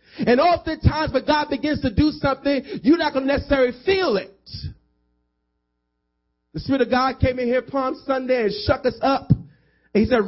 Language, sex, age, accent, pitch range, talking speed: English, male, 40-59, American, 210-295 Hz, 170 wpm